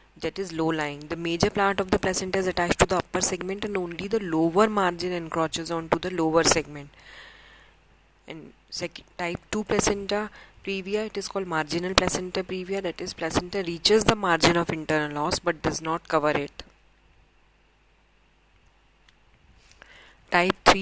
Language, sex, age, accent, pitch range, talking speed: Hindi, female, 30-49, native, 165-190 Hz, 155 wpm